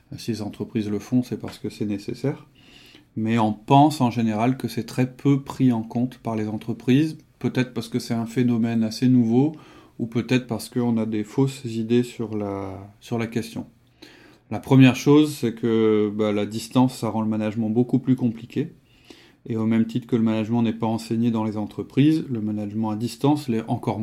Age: 30-49